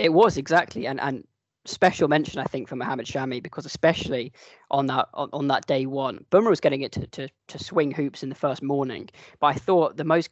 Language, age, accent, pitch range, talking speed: English, 20-39, British, 135-160 Hz, 225 wpm